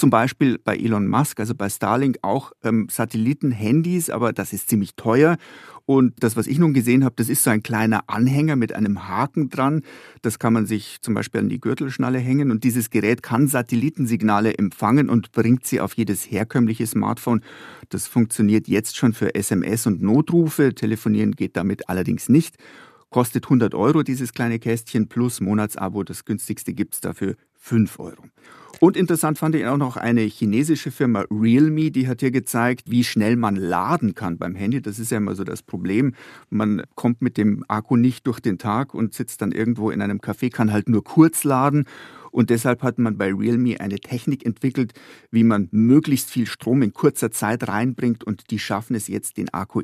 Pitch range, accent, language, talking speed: 110-130 Hz, German, German, 190 wpm